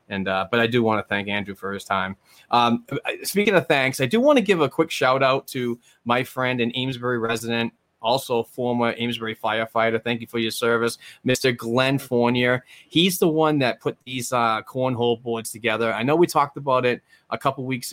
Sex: male